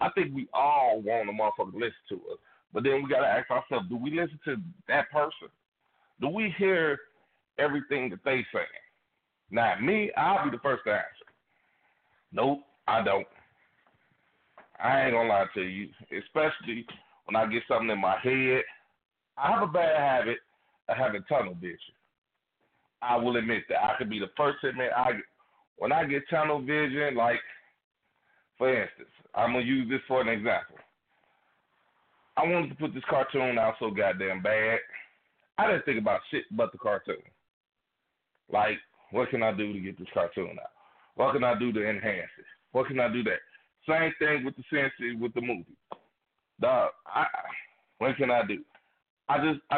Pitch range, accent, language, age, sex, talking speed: 120-170 Hz, American, English, 40-59, male, 180 wpm